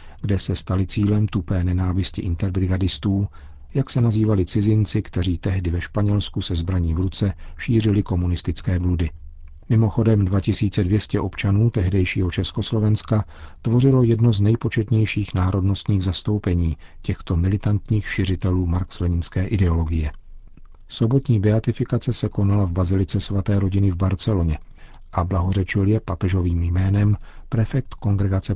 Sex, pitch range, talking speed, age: male, 90-110 Hz, 115 wpm, 50-69